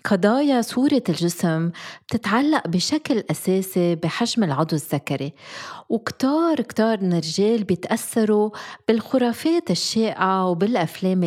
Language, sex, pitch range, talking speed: Arabic, female, 170-230 Hz, 90 wpm